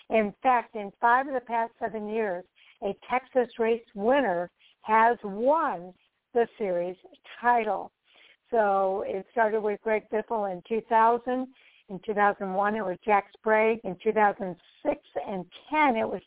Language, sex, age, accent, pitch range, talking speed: English, female, 60-79, American, 195-235 Hz, 140 wpm